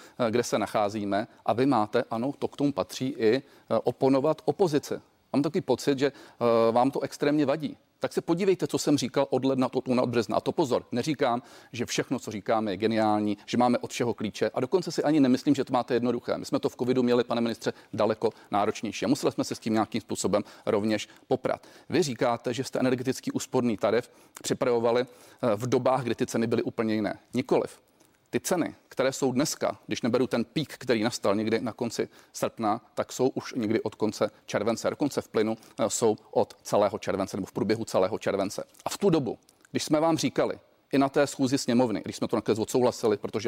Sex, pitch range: male, 115-140 Hz